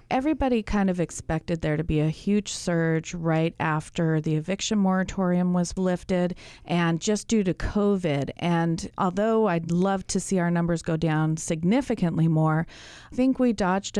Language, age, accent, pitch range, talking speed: English, 30-49, American, 160-190 Hz, 165 wpm